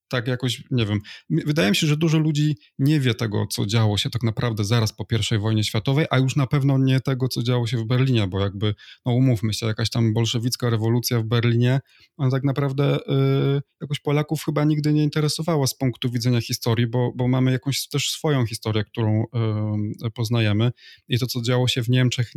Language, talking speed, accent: Polish, 205 wpm, native